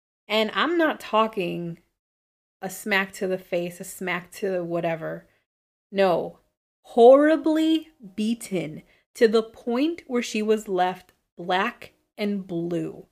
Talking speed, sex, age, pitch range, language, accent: 120 wpm, female, 30-49, 190-275 Hz, English, American